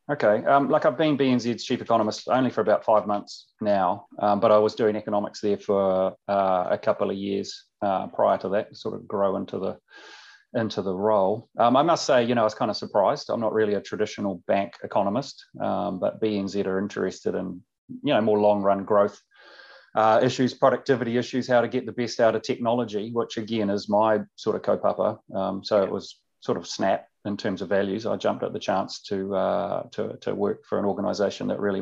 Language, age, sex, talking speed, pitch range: English, 30-49, male, 215 wpm, 100-120 Hz